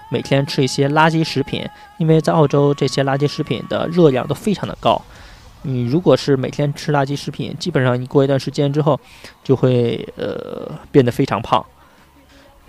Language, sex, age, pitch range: Chinese, male, 20-39, 130-155 Hz